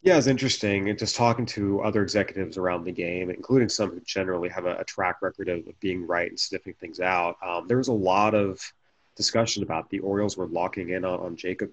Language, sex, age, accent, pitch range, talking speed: English, male, 30-49, American, 90-100 Hz, 230 wpm